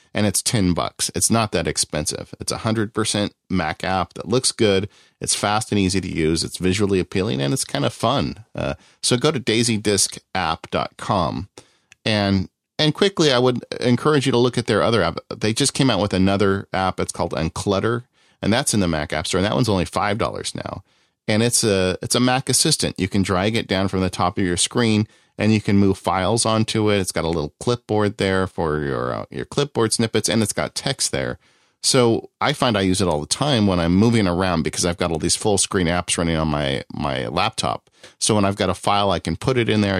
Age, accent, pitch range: 40-59, American, 85-110 Hz